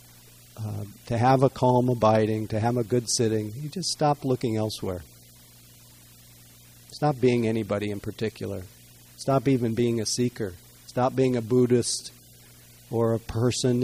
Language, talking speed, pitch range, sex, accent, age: English, 145 wpm, 95-130 Hz, male, American, 50-69